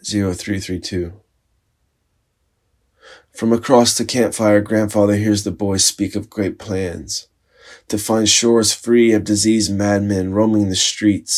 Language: English